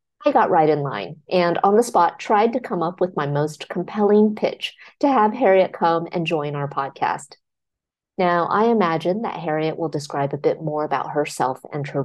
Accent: American